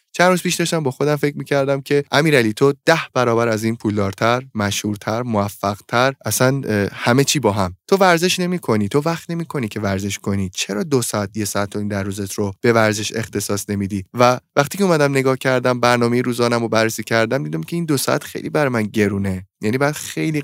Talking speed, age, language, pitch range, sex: 210 wpm, 20-39, Persian, 110-140 Hz, male